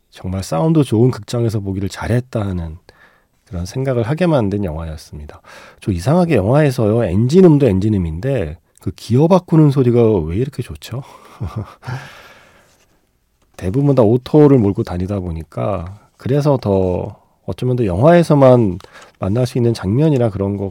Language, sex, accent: Korean, male, native